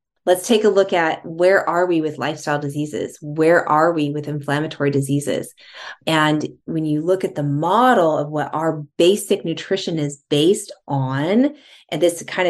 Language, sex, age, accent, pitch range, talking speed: English, female, 20-39, American, 150-195 Hz, 170 wpm